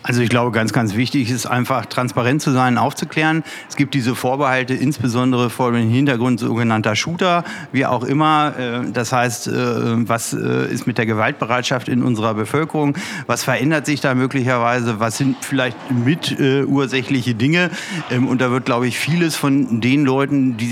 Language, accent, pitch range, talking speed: German, German, 120-145 Hz, 160 wpm